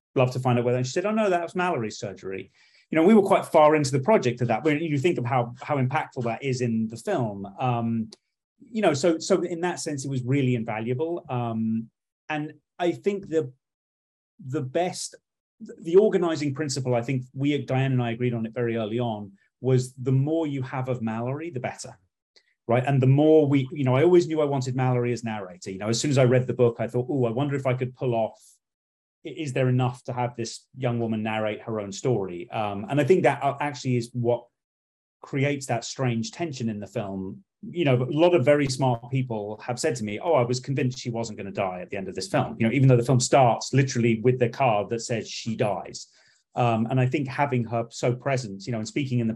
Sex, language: male, English